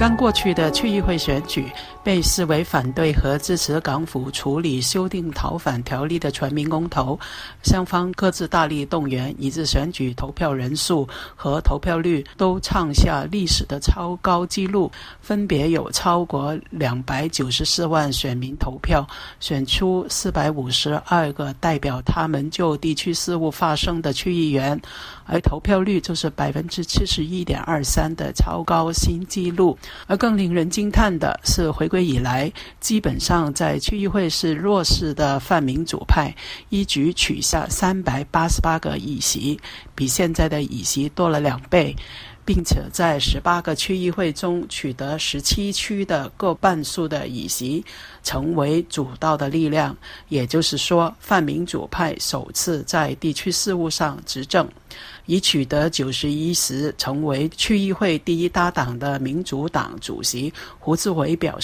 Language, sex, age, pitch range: Chinese, male, 60-79, 145-175 Hz